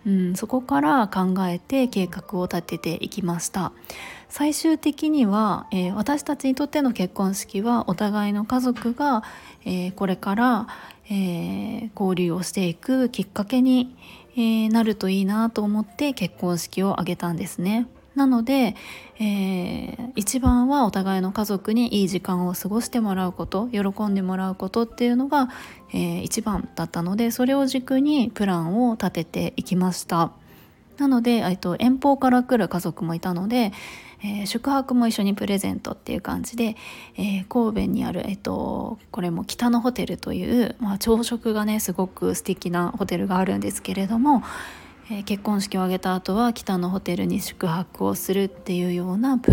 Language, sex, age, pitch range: Japanese, female, 20-39, 185-235 Hz